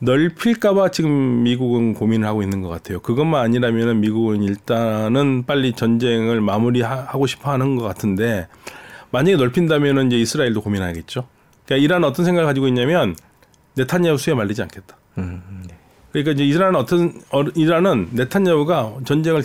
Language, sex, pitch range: Korean, male, 105-135 Hz